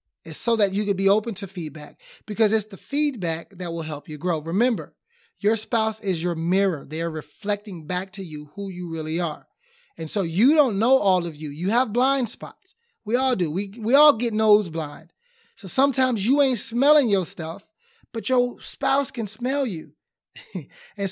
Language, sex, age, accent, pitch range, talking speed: English, male, 30-49, American, 165-220 Hz, 195 wpm